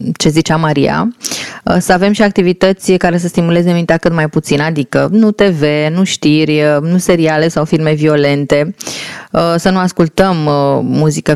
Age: 20-39